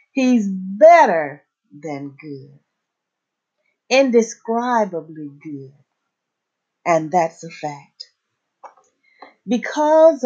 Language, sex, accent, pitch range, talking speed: English, female, American, 165-235 Hz, 65 wpm